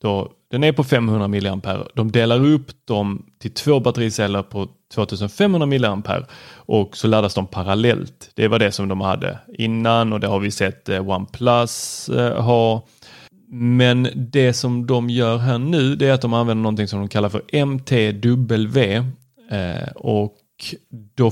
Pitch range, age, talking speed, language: 100-125 Hz, 30-49, 155 wpm, Swedish